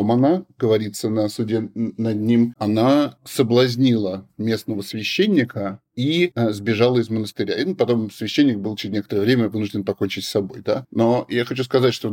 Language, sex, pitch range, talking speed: Russian, male, 105-125 Hz, 160 wpm